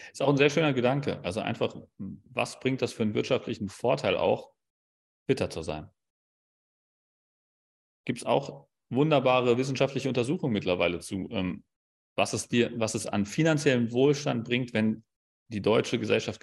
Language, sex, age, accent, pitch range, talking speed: German, male, 30-49, German, 100-135 Hz, 145 wpm